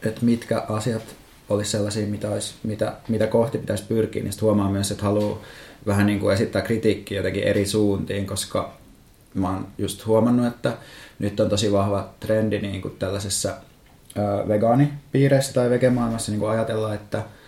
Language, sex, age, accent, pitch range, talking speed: Finnish, male, 20-39, native, 100-115 Hz, 160 wpm